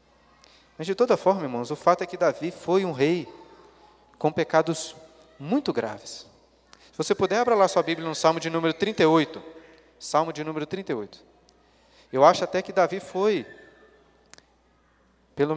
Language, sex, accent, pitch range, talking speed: Portuguese, male, Brazilian, 150-200 Hz, 155 wpm